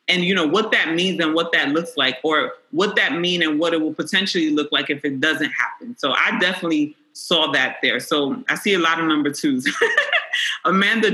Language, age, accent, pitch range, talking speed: English, 30-49, American, 155-205 Hz, 220 wpm